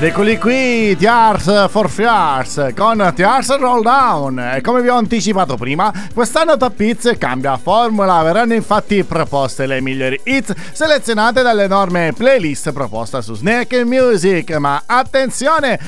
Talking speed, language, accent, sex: 130 wpm, Italian, native, male